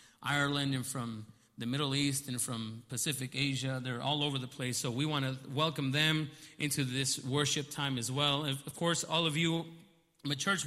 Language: English